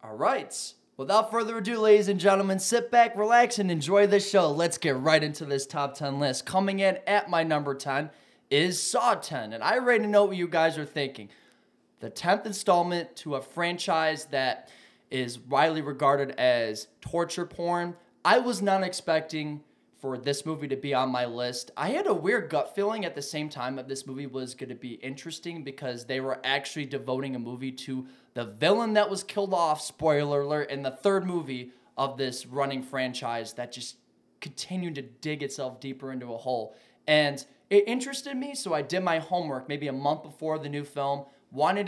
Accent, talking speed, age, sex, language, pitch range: American, 190 wpm, 20-39, male, English, 135-180 Hz